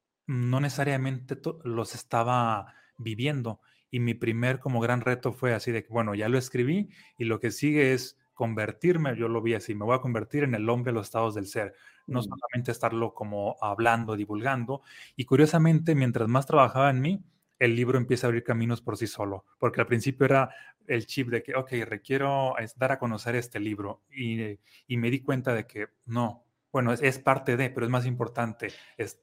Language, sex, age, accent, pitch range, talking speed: Spanish, male, 30-49, Mexican, 115-130 Hz, 195 wpm